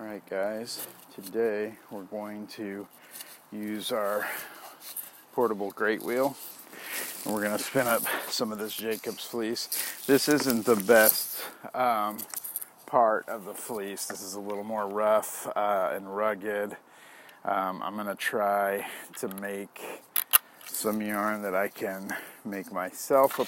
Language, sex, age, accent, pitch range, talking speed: English, male, 40-59, American, 100-120 Hz, 140 wpm